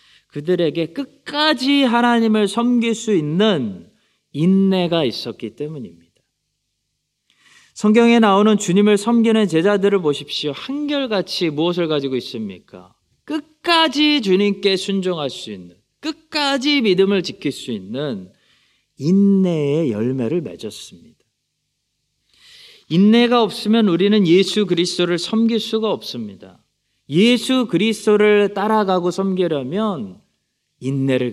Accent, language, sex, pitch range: native, Korean, male, 135-210 Hz